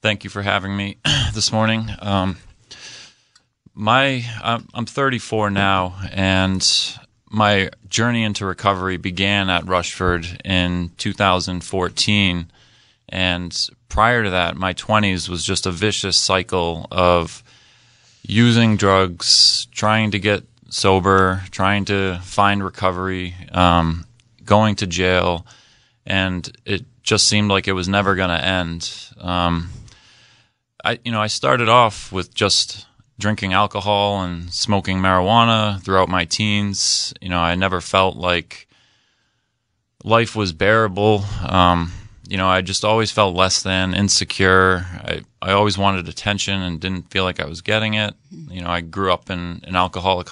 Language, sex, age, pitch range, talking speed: English, male, 30-49, 90-110 Hz, 140 wpm